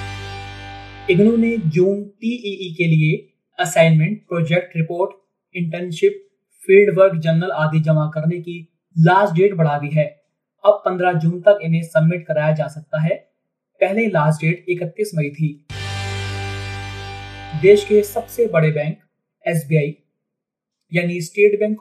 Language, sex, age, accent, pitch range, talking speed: Hindi, male, 30-49, native, 155-185 Hz, 80 wpm